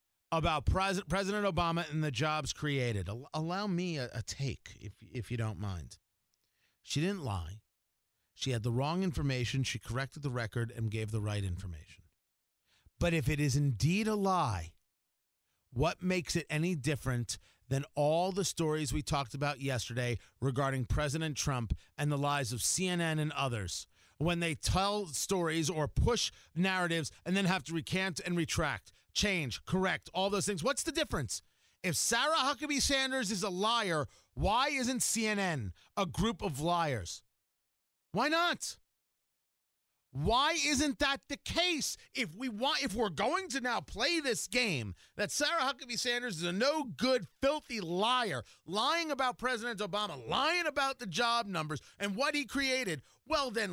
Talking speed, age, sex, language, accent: 160 wpm, 40-59, male, English, American